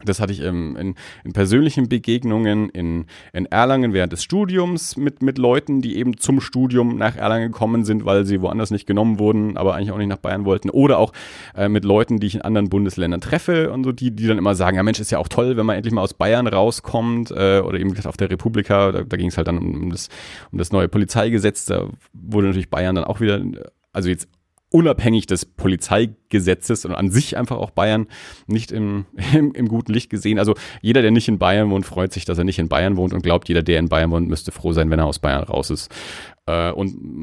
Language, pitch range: German, 95-120 Hz